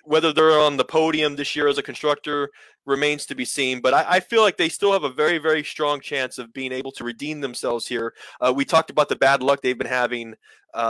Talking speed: 250 wpm